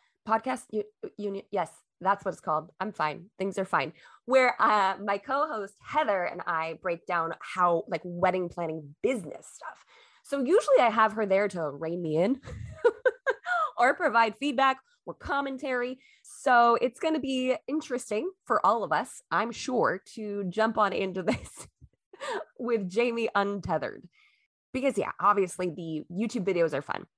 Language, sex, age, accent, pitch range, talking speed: English, female, 20-39, American, 175-250 Hz, 155 wpm